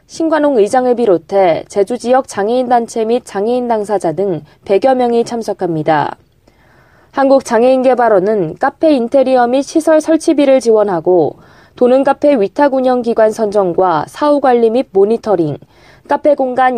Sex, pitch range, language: female, 200-260 Hz, Korean